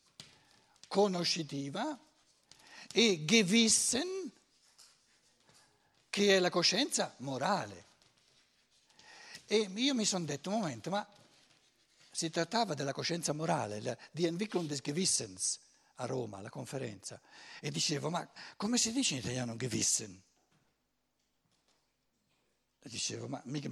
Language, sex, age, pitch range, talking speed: Italian, male, 60-79, 140-205 Hz, 105 wpm